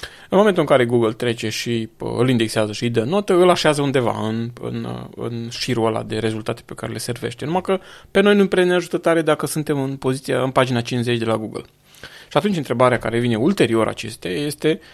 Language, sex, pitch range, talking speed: Romanian, male, 115-145 Hz, 220 wpm